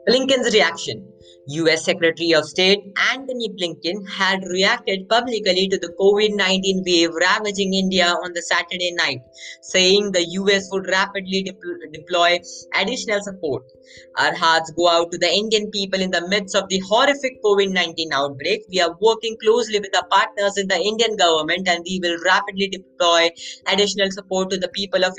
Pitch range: 175-205 Hz